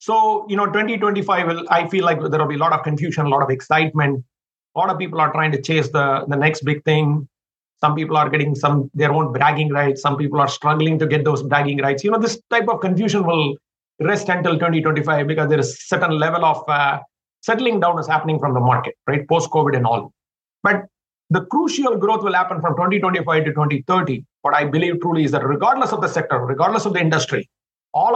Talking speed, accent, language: 220 wpm, Indian, English